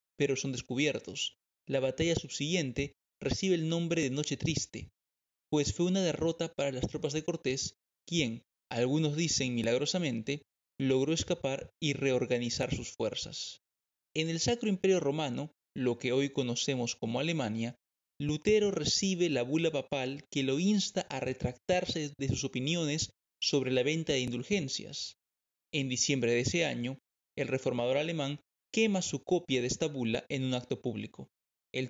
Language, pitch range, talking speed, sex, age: Spanish, 125-160 Hz, 150 wpm, male, 30-49